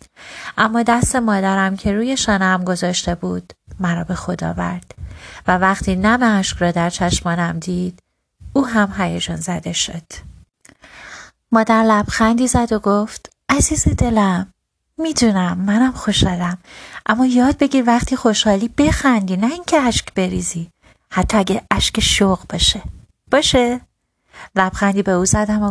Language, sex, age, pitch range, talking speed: Persian, female, 30-49, 180-225 Hz, 135 wpm